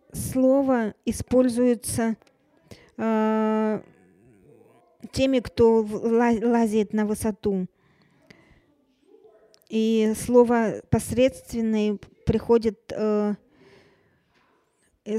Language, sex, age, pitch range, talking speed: English, female, 20-39, 210-240 Hz, 50 wpm